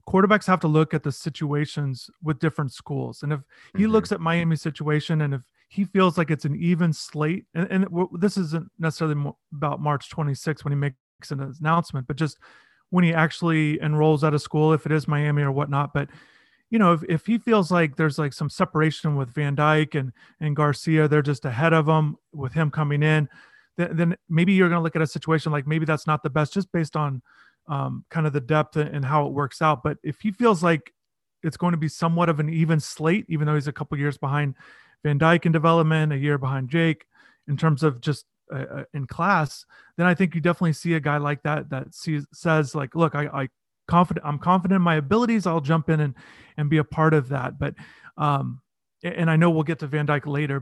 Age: 30-49